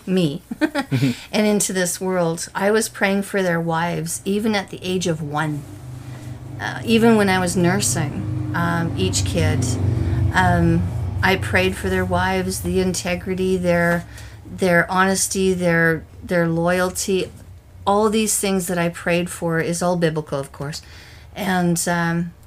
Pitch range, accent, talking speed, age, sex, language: 135-185 Hz, American, 145 wpm, 40-59, female, English